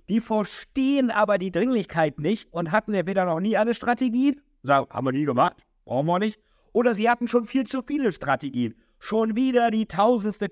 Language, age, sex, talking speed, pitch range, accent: German, 60-79, male, 195 wpm, 130-185 Hz, German